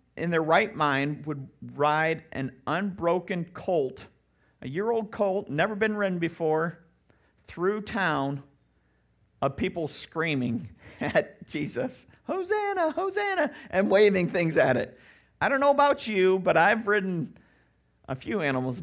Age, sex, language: 50-69, male, English